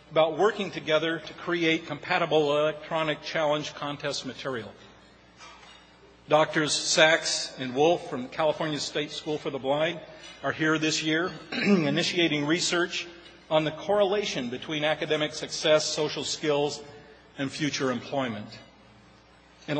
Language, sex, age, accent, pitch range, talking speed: English, male, 50-69, American, 140-170 Hz, 120 wpm